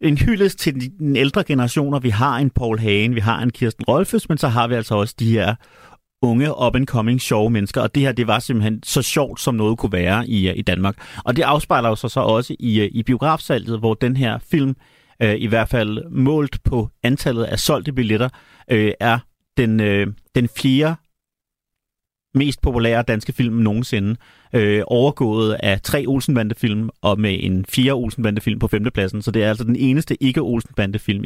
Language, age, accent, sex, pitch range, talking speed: Danish, 30-49, native, male, 105-130 Hz, 190 wpm